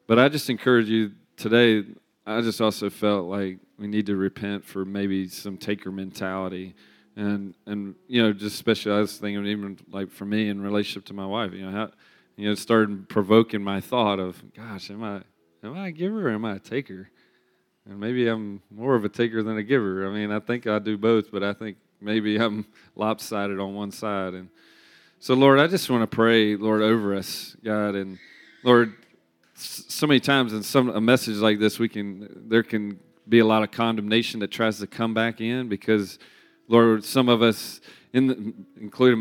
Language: English